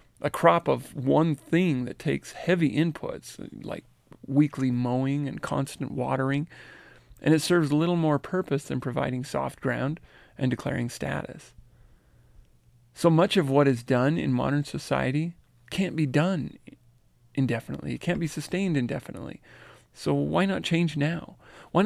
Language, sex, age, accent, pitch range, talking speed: English, male, 40-59, American, 130-165 Hz, 145 wpm